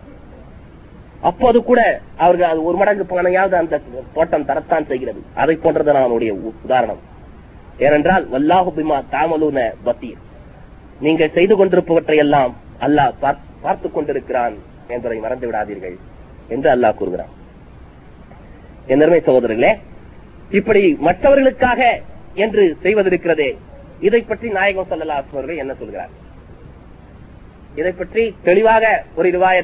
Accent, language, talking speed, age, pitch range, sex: native, Tamil, 95 wpm, 30-49, 155-245 Hz, male